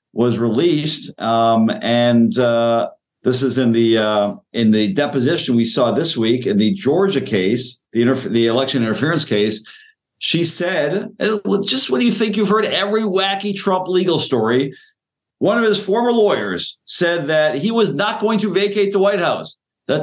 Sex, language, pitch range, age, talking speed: male, English, 135-200 Hz, 50-69, 175 wpm